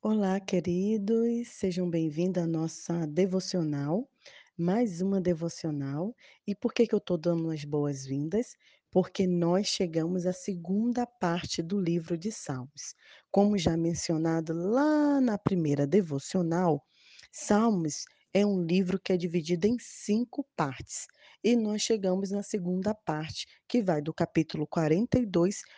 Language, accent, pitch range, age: Portuguese, Brazilian, 170-215 Hz, 20-39